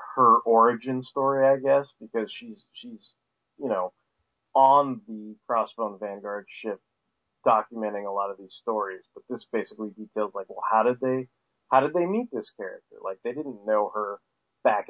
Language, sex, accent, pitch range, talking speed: English, male, American, 105-130 Hz, 170 wpm